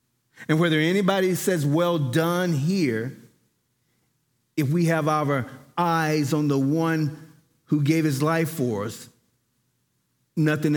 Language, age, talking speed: English, 40-59, 125 wpm